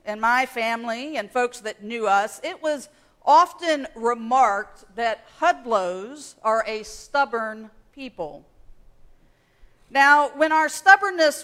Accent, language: American, English